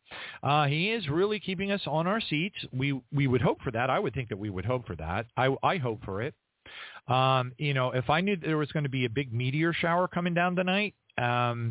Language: English